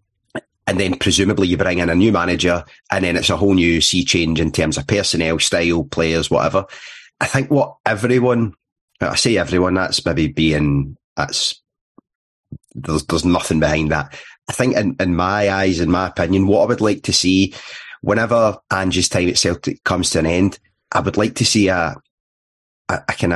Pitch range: 85-100 Hz